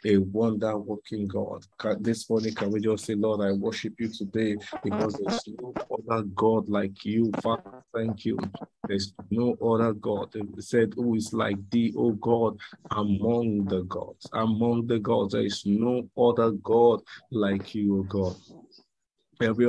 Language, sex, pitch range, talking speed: English, male, 105-115 Hz, 165 wpm